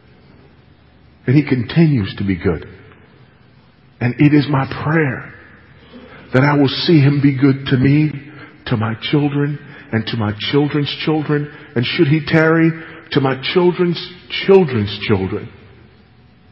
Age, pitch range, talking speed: 50-69, 105-145 Hz, 135 wpm